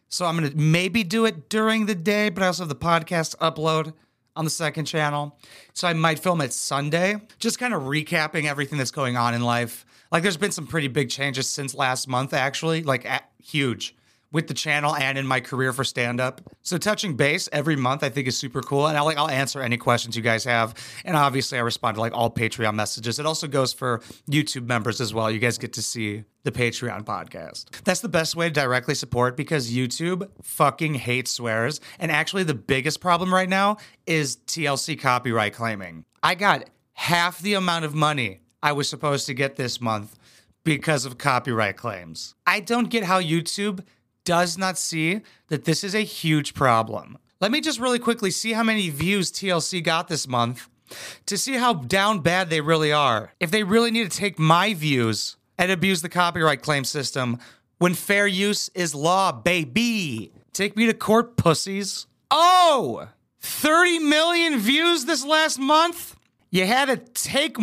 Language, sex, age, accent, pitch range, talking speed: English, male, 30-49, American, 130-190 Hz, 195 wpm